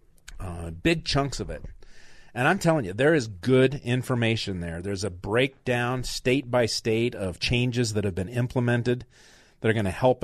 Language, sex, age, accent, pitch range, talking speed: English, male, 40-59, American, 105-130 Hz, 180 wpm